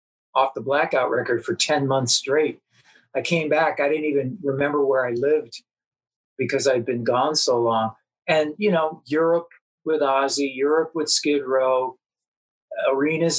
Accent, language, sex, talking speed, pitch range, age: American, English, male, 155 wpm, 125-155 Hz, 50-69